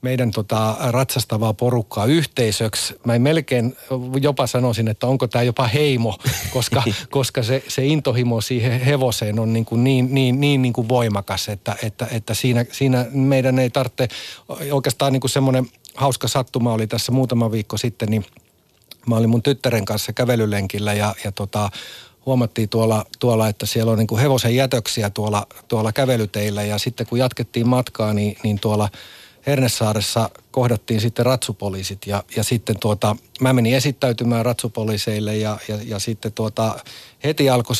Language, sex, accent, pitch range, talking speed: Finnish, male, native, 110-130 Hz, 155 wpm